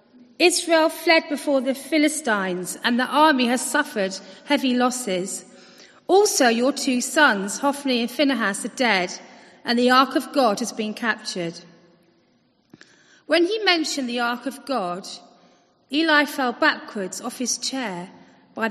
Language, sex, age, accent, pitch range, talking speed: English, female, 40-59, British, 205-275 Hz, 140 wpm